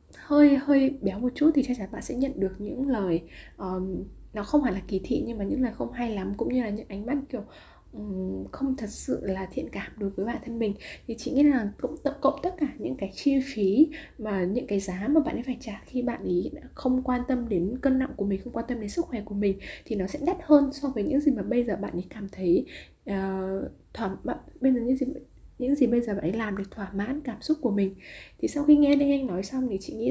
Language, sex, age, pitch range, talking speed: Vietnamese, female, 10-29, 200-275 Hz, 265 wpm